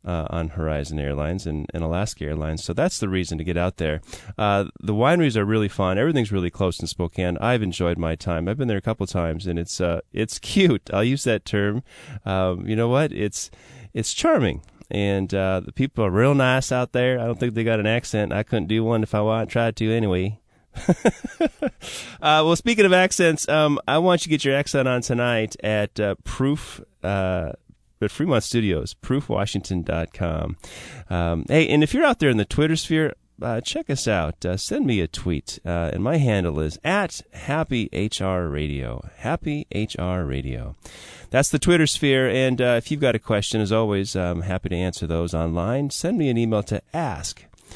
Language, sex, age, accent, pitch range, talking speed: English, male, 20-39, American, 90-130 Hz, 195 wpm